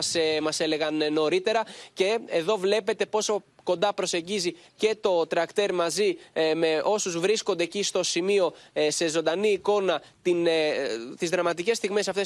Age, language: 20-39, Greek